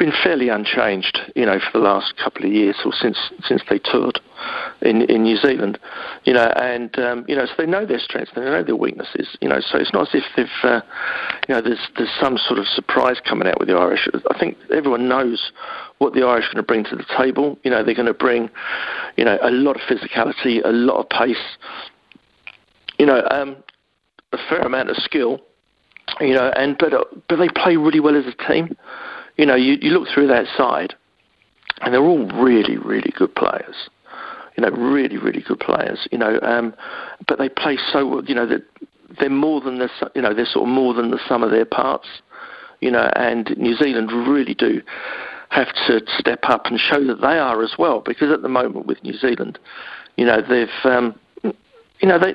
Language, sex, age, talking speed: English, male, 50-69, 215 wpm